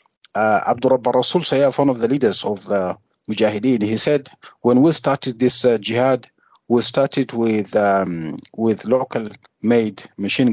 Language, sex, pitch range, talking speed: English, male, 115-140 Hz, 150 wpm